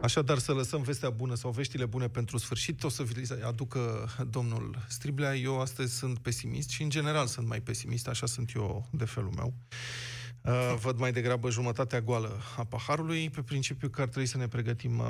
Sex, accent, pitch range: male, native, 120-140 Hz